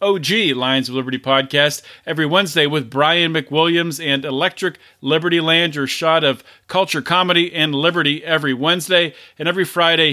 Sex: male